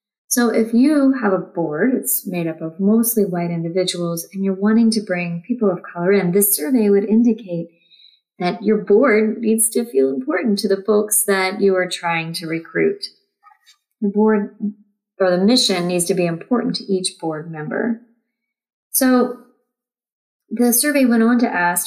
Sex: female